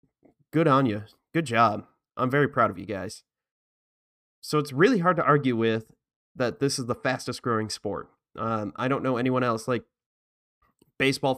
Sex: male